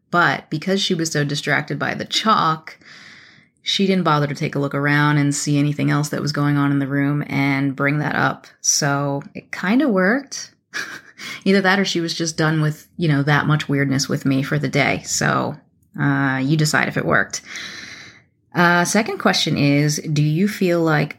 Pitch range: 145-160 Hz